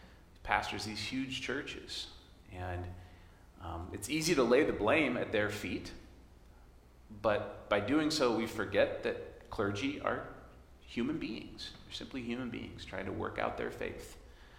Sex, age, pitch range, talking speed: male, 40-59, 75-115 Hz, 150 wpm